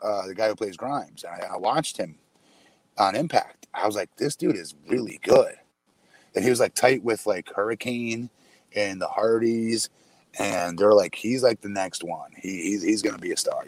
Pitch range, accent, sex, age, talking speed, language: 110-150 Hz, American, male, 30-49, 210 wpm, English